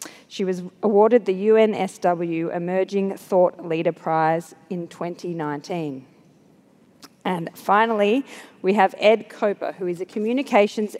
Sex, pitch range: female, 170-210 Hz